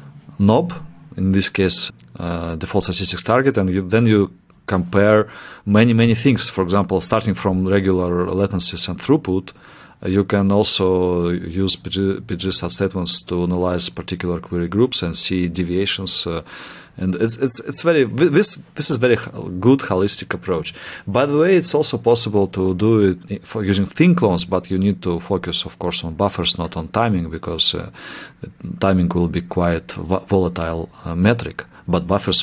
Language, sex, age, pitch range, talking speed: English, male, 30-49, 90-105 Hz, 165 wpm